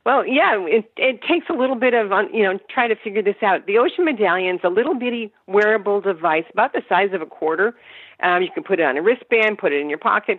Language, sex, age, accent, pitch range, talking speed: English, female, 50-69, American, 180-245 Hz, 255 wpm